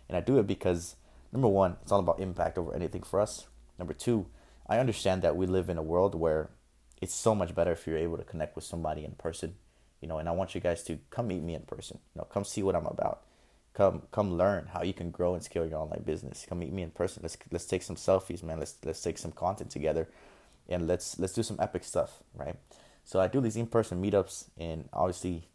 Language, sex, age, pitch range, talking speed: English, male, 20-39, 80-95 Hz, 245 wpm